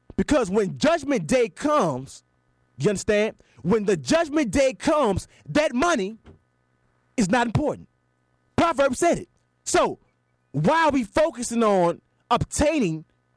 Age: 20-39